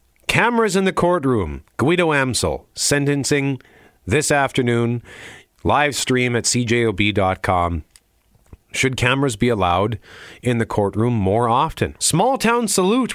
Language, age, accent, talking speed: English, 40-59, American, 115 wpm